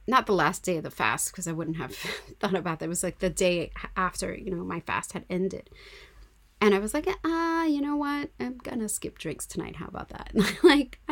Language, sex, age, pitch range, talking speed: English, female, 30-49, 165-220 Hz, 250 wpm